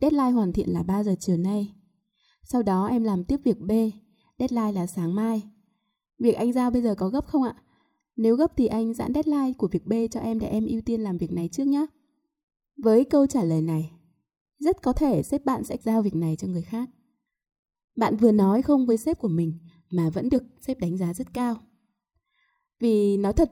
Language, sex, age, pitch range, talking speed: Vietnamese, female, 20-39, 185-255 Hz, 215 wpm